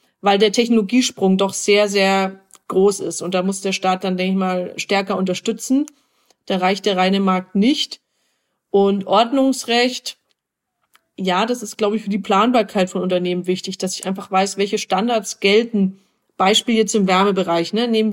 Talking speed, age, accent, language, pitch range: 170 wpm, 30-49, German, German, 195-230 Hz